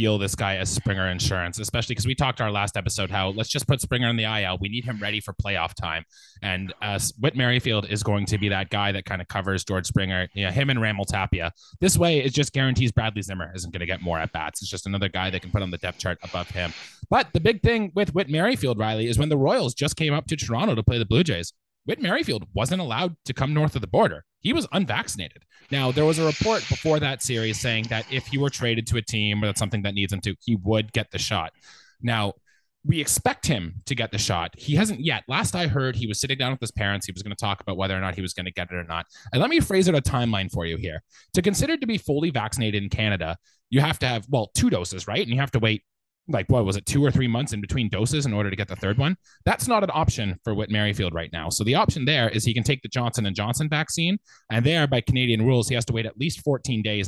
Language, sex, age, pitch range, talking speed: English, male, 20-39, 100-135 Hz, 275 wpm